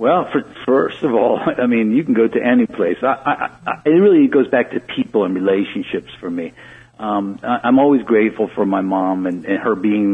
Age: 50-69